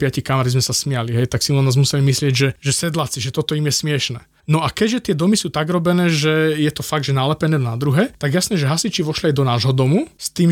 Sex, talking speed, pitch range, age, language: male, 265 wpm, 140-180 Hz, 20-39, Slovak